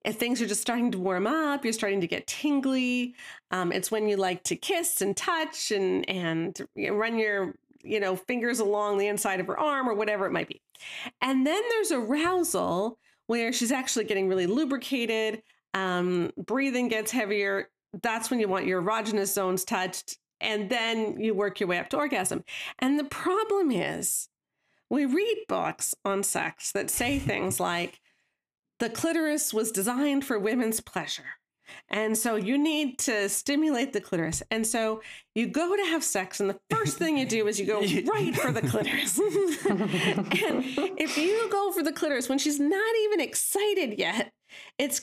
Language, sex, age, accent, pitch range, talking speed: English, female, 40-59, American, 205-290 Hz, 175 wpm